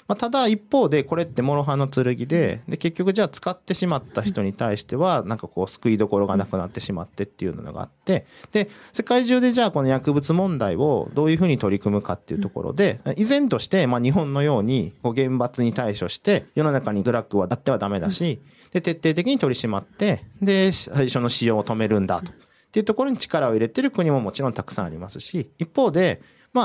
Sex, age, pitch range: male, 40-59, 120-200 Hz